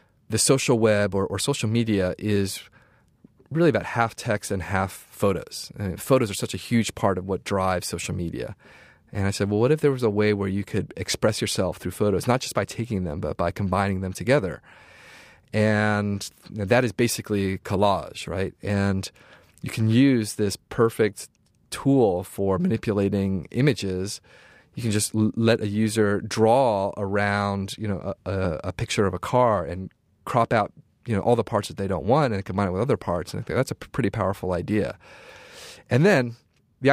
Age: 30-49